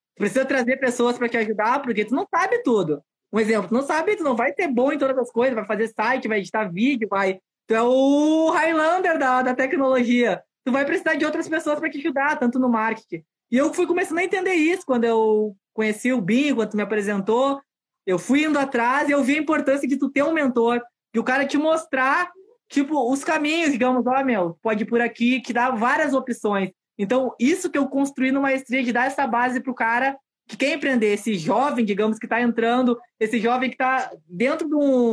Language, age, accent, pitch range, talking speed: Portuguese, 20-39, Brazilian, 225-285 Hz, 220 wpm